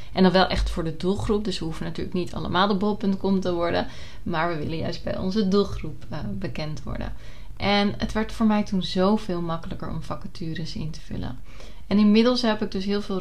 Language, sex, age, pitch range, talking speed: Dutch, female, 30-49, 160-210 Hz, 215 wpm